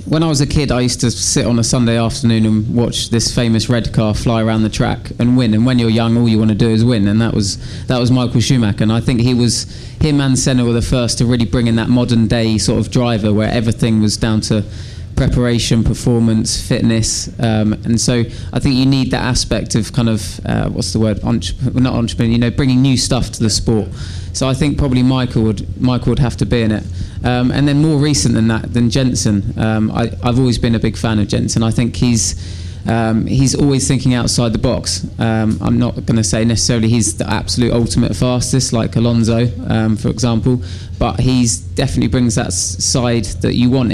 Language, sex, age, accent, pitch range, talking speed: English, male, 20-39, British, 110-125 Hz, 220 wpm